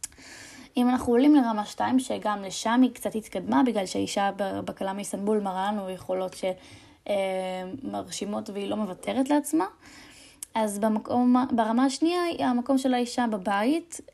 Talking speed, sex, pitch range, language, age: 125 wpm, female, 205-270 Hz, Hebrew, 10-29